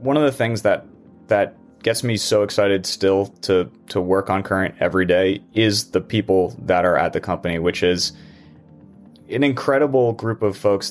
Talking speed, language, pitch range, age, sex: 180 wpm, English, 95-115 Hz, 30-49, male